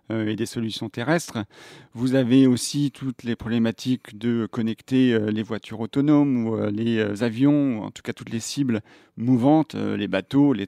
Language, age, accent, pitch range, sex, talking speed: French, 40-59, French, 110-135 Hz, male, 165 wpm